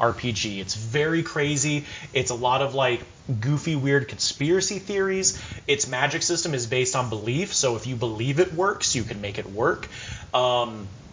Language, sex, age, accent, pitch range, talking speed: English, male, 30-49, American, 115-145 Hz, 175 wpm